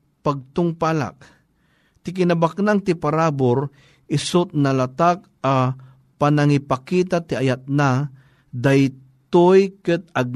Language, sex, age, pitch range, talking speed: Filipino, male, 50-69, 130-165 Hz, 95 wpm